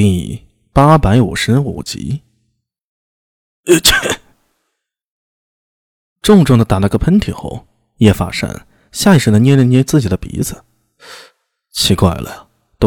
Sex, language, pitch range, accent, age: male, Chinese, 100-140 Hz, native, 20-39